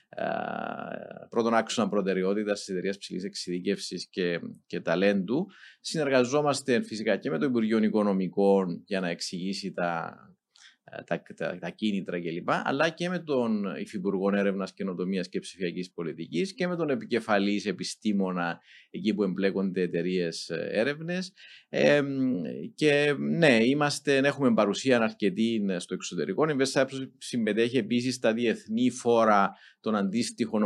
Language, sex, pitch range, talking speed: Greek, male, 100-145 Hz, 125 wpm